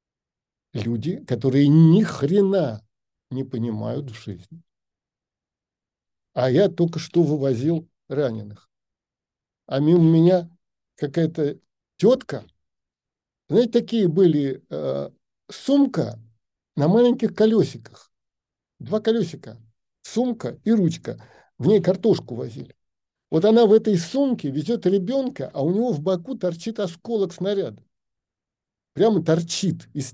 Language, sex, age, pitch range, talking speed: Russian, male, 50-69, 135-185 Hz, 110 wpm